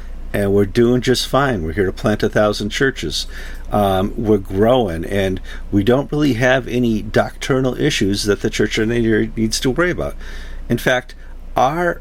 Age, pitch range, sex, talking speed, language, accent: 50-69, 75-125 Hz, male, 175 wpm, English, American